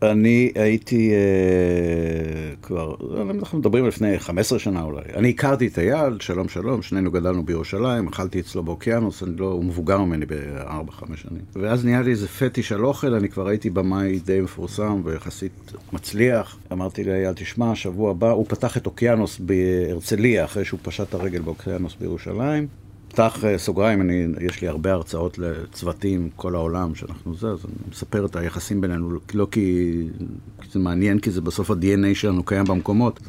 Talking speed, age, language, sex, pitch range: 165 wpm, 50-69, Hebrew, male, 90-110 Hz